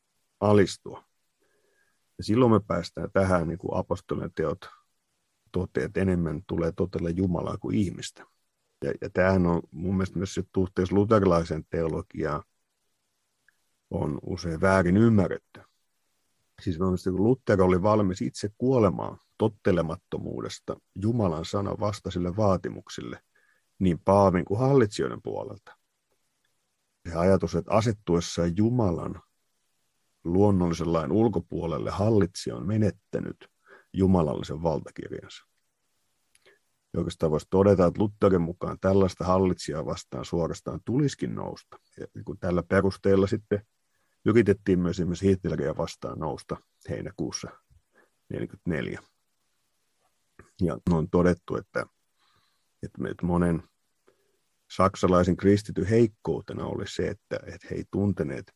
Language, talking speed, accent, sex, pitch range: Finnish, 105 wpm, native, male, 85-100 Hz